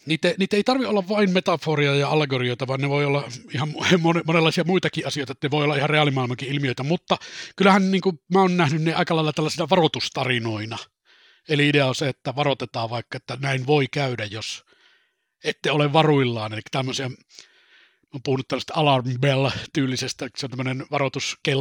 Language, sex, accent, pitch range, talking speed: Finnish, male, native, 130-155 Hz, 170 wpm